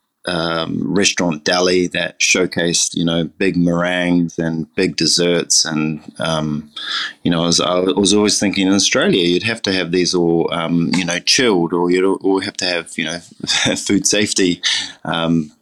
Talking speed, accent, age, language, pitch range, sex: 175 wpm, Australian, 20-39, English, 85-95 Hz, male